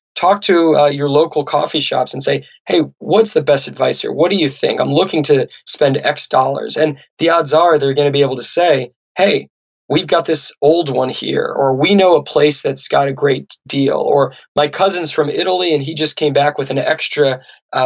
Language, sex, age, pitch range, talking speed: English, male, 20-39, 135-155 Hz, 225 wpm